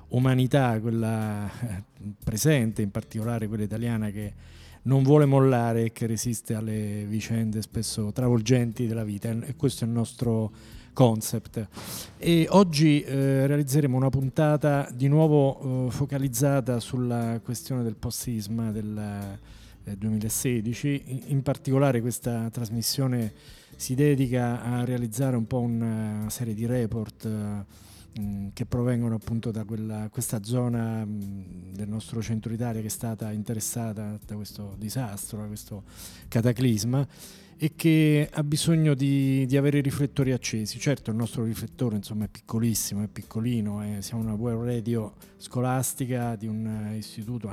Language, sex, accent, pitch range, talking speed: Italian, male, native, 110-135 Hz, 135 wpm